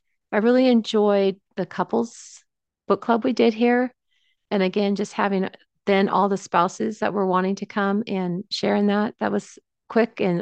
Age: 30-49